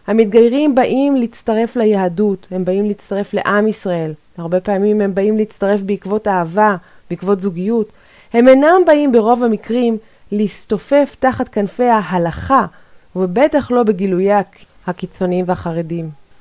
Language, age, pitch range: Hebrew, 30-49, 205-260 Hz